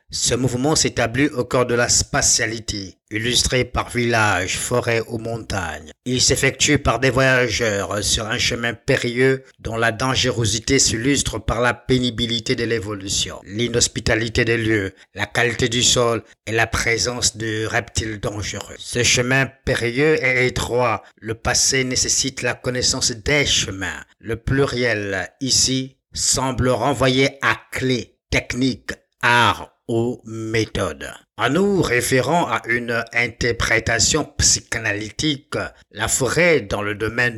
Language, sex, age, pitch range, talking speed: French, male, 60-79, 110-130 Hz, 130 wpm